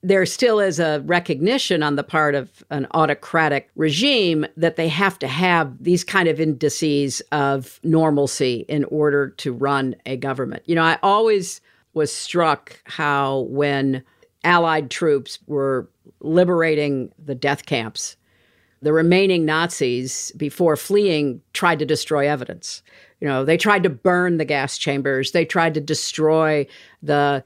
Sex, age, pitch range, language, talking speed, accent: female, 50-69, 140-175 Hz, English, 145 wpm, American